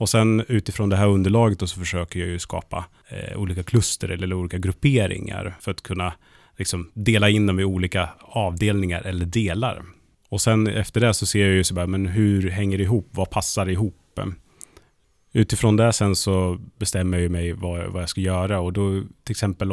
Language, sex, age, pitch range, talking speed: Swedish, male, 30-49, 90-105 Hz, 190 wpm